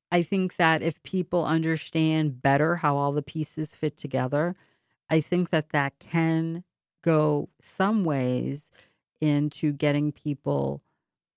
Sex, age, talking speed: female, 50-69, 125 wpm